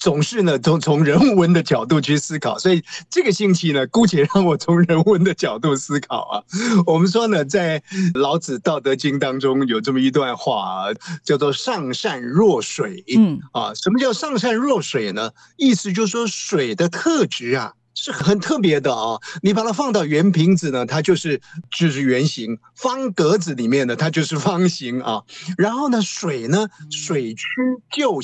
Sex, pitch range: male, 145-210 Hz